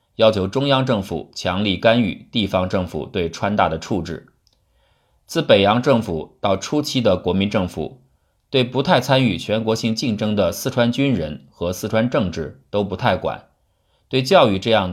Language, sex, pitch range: Chinese, male, 90-120 Hz